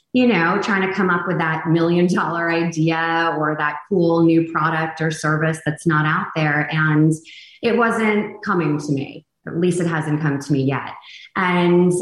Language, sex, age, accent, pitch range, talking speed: English, female, 20-39, American, 155-190 Hz, 185 wpm